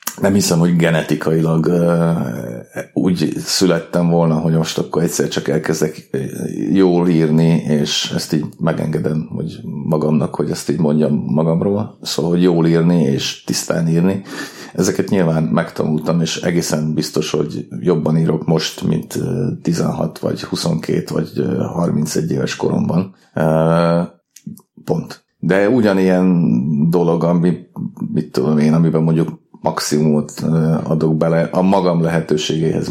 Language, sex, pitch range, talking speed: Hungarian, male, 80-90 Hz, 120 wpm